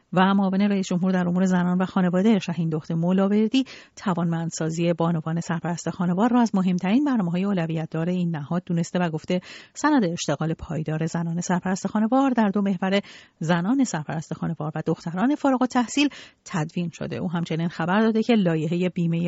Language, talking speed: Persian, 170 wpm